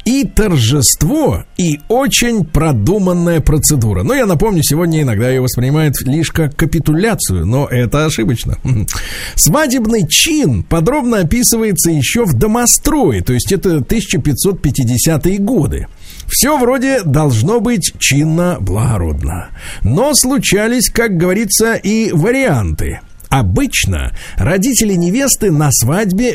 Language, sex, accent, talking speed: Russian, male, native, 105 wpm